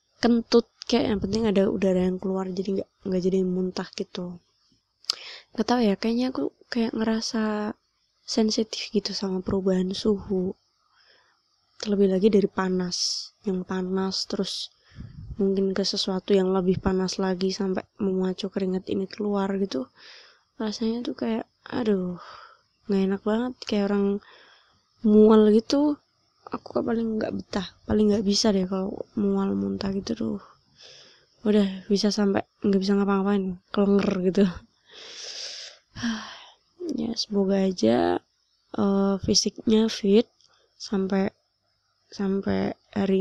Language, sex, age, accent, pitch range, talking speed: Indonesian, female, 20-39, native, 190-220 Hz, 120 wpm